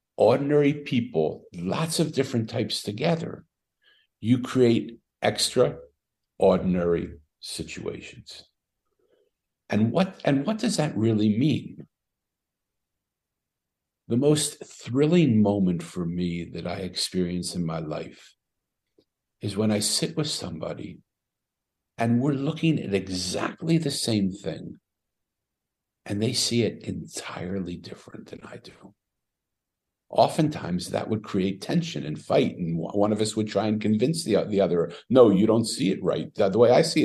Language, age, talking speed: English, 60-79, 135 wpm